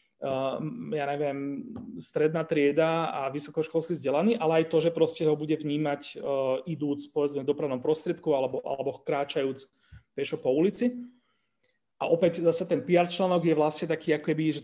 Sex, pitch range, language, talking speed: male, 145-175 Hz, Slovak, 160 wpm